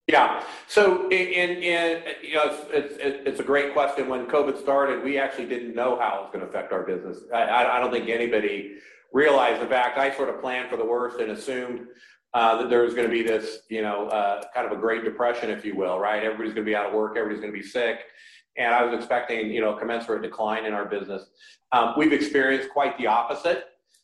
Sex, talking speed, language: male, 220 wpm, English